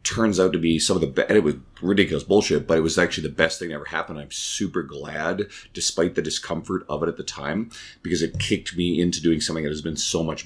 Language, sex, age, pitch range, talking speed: English, male, 30-49, 80-100 Hz, 260 wpm